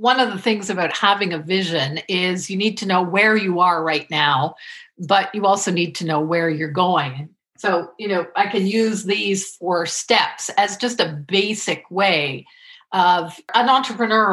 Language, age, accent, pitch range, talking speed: English, 50-69, American, 165-210 Hz, 185 wpm